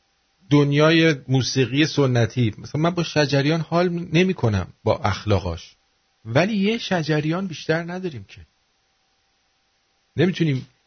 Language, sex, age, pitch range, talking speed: English, male, 50-69, 115-160 Hz, 100 wpm